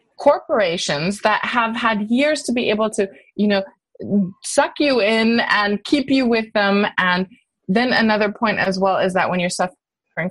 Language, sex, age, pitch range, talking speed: English, female, 20-39, 185-245 Hz, 175 wpm